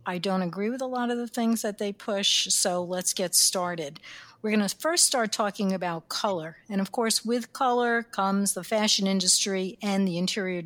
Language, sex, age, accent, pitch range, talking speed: English, female, 60-79, American, 180-225 Hz, 205 wpm